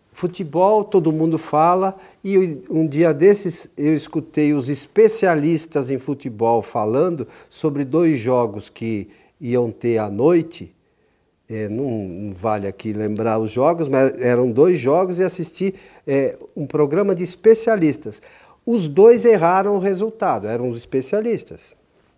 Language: Portuguese